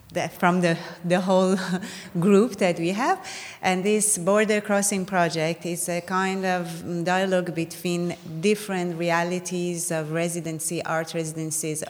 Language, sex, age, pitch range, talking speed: English, female, 30-49, 160-185 Hz, 125 wpm